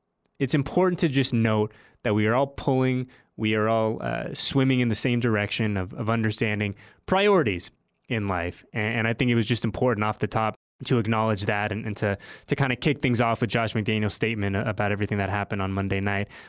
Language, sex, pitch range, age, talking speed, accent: English, male, 105-135 Hz, 20-39, 215 wpm, American